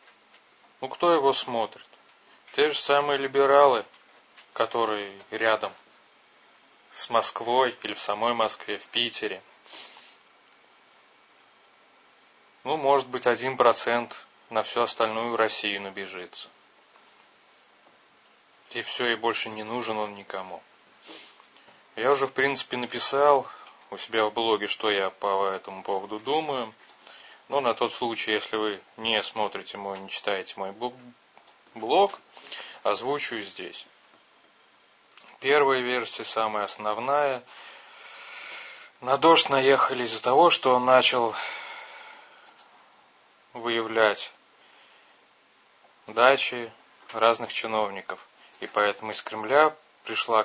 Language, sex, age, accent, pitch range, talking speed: Russian, male, 20-39, native, 110-140 Hz, 105 wpm